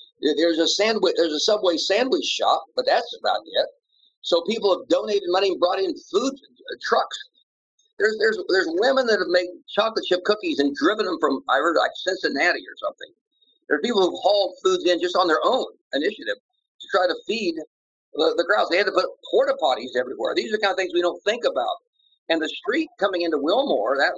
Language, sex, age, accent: English, male, 50-69, American